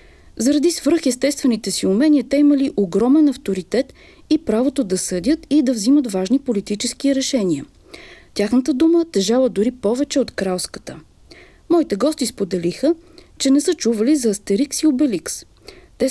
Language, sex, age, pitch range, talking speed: Bulgarian, female, 40-59, 200-295 Hz, 140 wpm